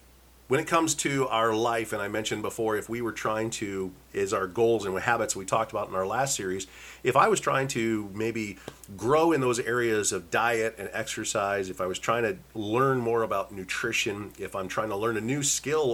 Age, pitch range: 40-59, 110-140 Hz